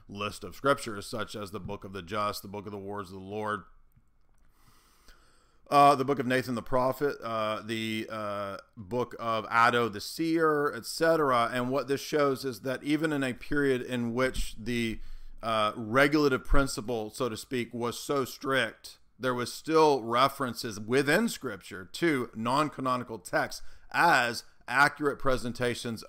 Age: 40-59